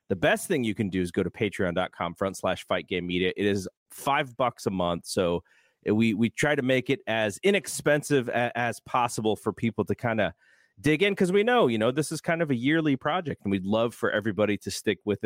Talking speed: 235 wpm